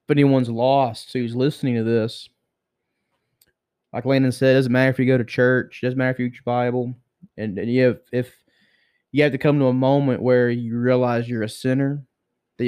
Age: 20-39